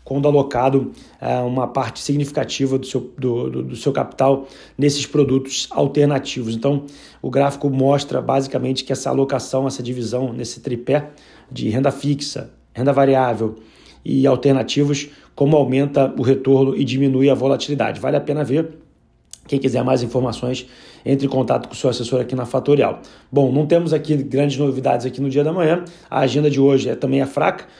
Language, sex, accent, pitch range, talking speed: Portuguese, male, Brazilian, 130-145 Hz, 165 wpm